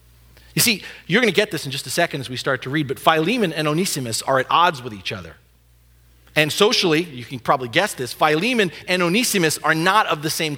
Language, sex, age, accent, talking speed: English, male, 40-59, American, 235 wpm